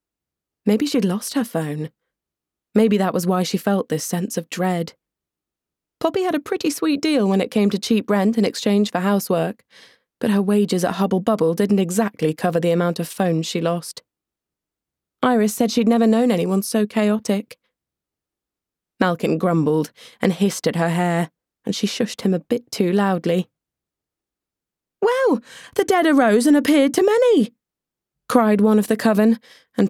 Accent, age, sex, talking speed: British, 20-39, female, 165 wpm